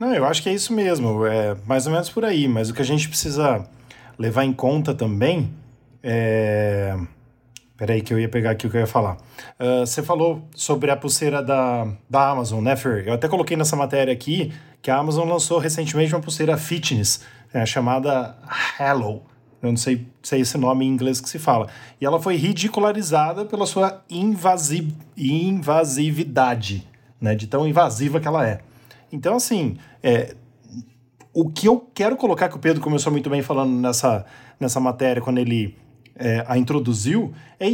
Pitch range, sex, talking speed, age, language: 125-165 Hz, male, 180 wpm, 20-39, Portuguese